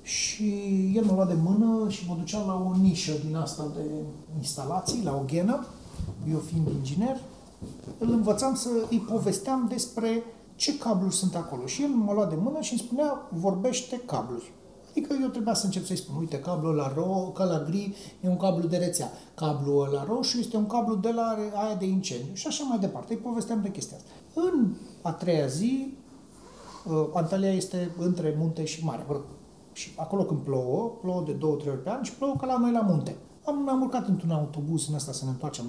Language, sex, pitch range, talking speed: Romanian, male, 165-230 Hz, 200 wpm